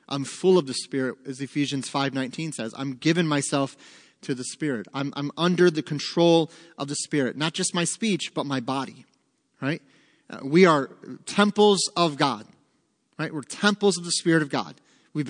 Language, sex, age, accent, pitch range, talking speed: English, male, 30-49, American, 140-180 Hz, 175 wpm